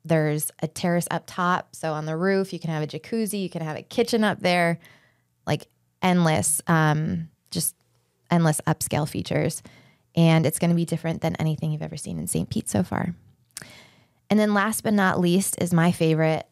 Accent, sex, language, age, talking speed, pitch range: American, female, English, 20-39, 195 wpm, 155-175 Hz